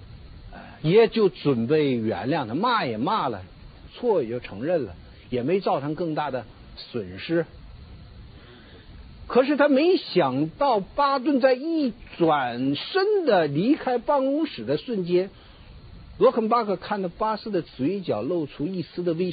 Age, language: 50-69, Chinese